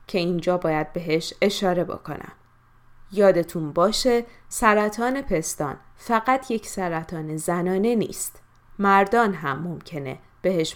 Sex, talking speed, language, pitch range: female, 110 wpm, Persian, 160-210 Hz